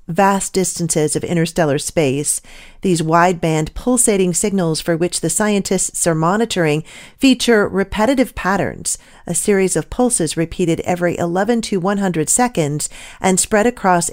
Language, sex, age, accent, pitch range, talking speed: English, female, 40-59, American, 170-235 Hz, 130 wpm